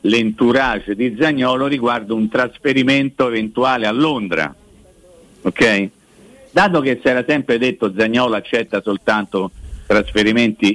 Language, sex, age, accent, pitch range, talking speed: Italian, male, 50-69, native, 100-135 Hz, 110 wpm